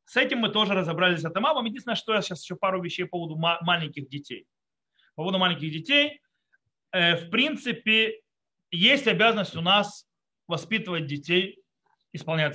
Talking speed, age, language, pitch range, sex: 150 wpm, 30-49, Russian, 155-210 Hz, male